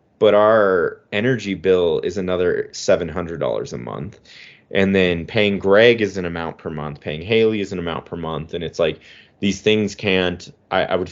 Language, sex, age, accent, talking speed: English, male, 30-49, American, 180 wpm